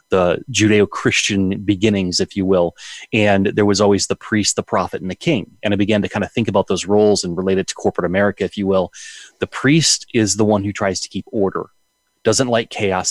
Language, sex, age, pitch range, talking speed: English, male, 30-49, 95-105 Hz, 225 wpm